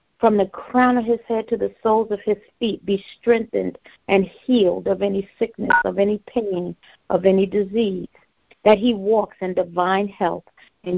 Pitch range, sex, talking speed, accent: 190-220 Hz, female, 175 wpm, American